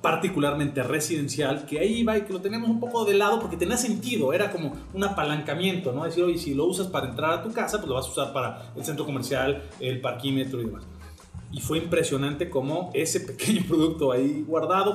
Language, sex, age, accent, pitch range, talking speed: Spanish, male, 30-49, Mexican, 130-190 Hz, 215 wpm